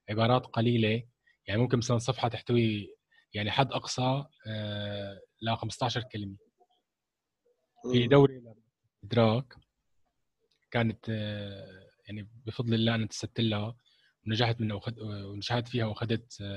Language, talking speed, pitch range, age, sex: Arabic, 100 wpm, 110-135 Hz, 20-39, male